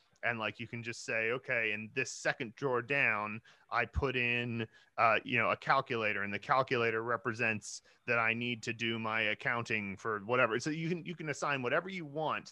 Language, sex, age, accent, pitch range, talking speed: English, male, 30-49, American, 110-135 Hz, 200 wpm